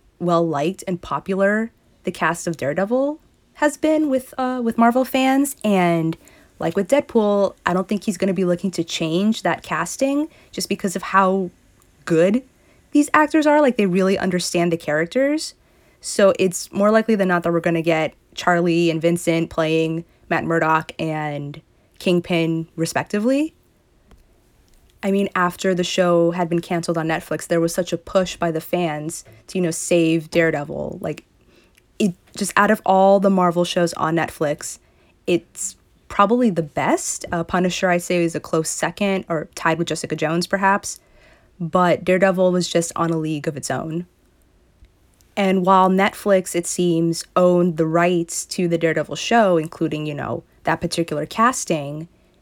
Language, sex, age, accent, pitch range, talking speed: English, female, 20-39, American, 165-195 Hz, 165 wpm